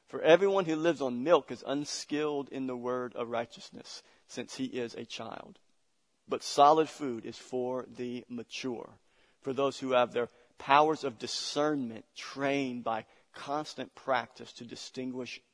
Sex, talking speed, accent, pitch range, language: male, 150 wpm, American, 120-140 Hz, English